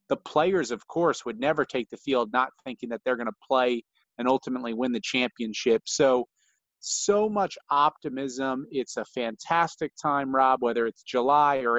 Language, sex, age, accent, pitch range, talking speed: English, male, 30-49, American, 130-180 Hz, 175 wpm